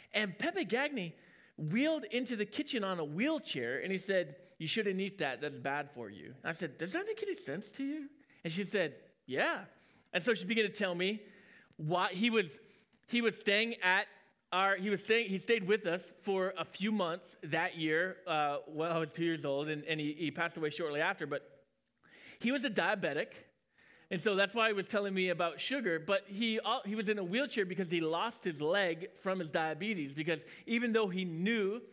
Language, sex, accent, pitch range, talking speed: English, male, American, 155-210 Hz, 205 wpm